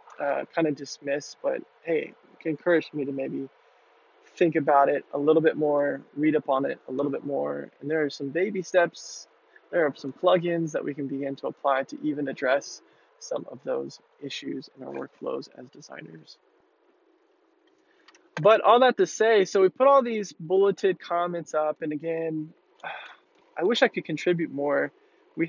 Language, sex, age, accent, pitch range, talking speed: English, male, 20-39, American, 150-185 Hz, 180 wpm